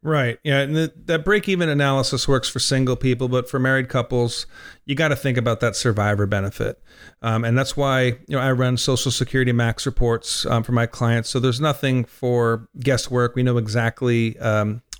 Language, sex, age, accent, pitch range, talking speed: English, male, 40-59, American, 120-145 Hz, 190 wpm